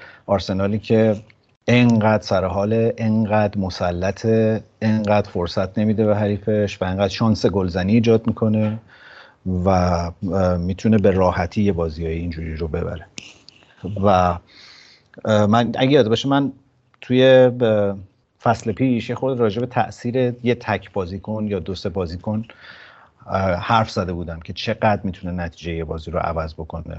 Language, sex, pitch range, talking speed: Persian, male, 90-110 Hz, 130 wpm